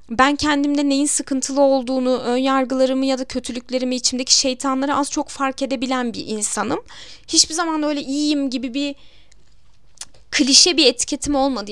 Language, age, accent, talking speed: Turkish, 10-29, native, 145 wpm